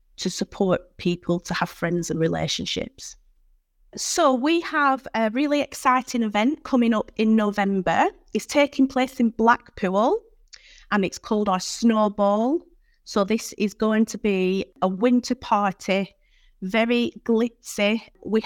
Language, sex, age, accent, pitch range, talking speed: English, female, 30-49, British, 195-240 Hz, 135 wpm